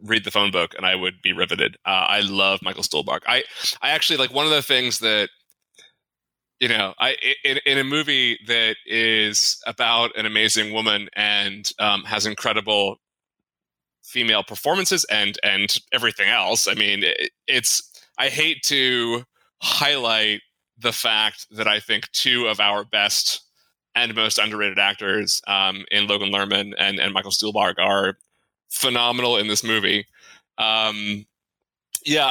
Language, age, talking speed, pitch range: English, 20-39, 150 wpm, 105-130 Hz